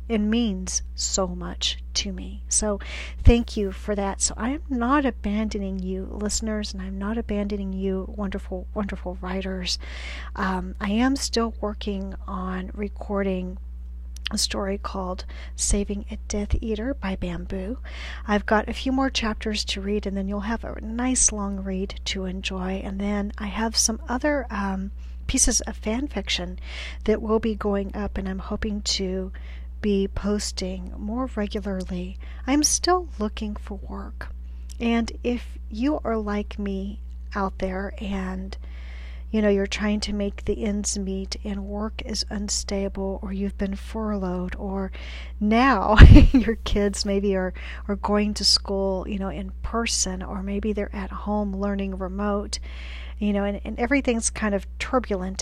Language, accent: English, American